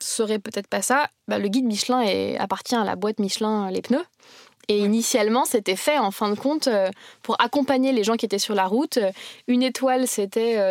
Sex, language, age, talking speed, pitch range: female, French, 20-39, 200 wpm, 210-255 Hz